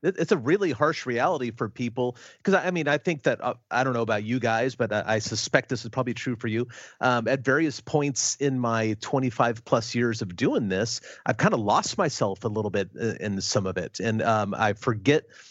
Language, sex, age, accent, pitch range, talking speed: English, male, 30-49, American, 105-125 Hz, 220 wpm